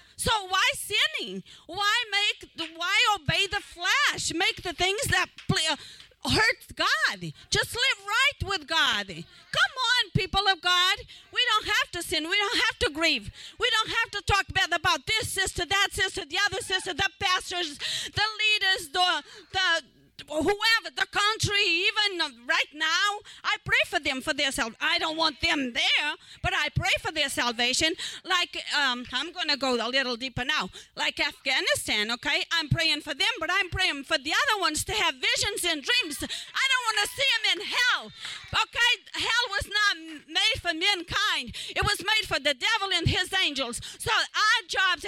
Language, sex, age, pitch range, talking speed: English, female, 40-59, 320-420 Hz, 180 wpm